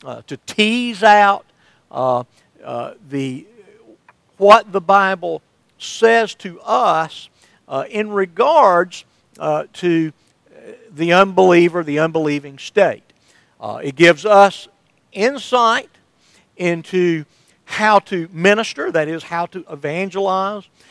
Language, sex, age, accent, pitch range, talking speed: English, male, 50-69, American, 160-215 Hz, 105 wpm